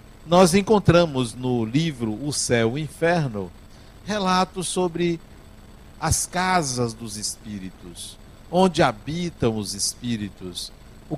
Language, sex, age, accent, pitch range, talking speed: Portuguese, male, 60-79, Brazilian, 110-180 Hz, 105 wpm